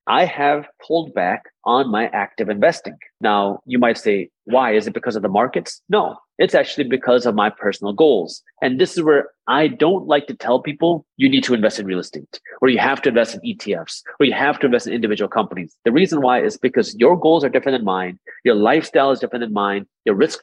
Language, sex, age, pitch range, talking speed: English, male, 30-49, 115-155 Hz, 230 wpm